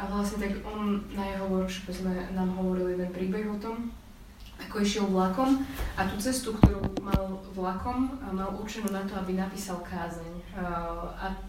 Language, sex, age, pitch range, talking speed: Slovak, female, 20-39, 185-210 Hz, 155 wpm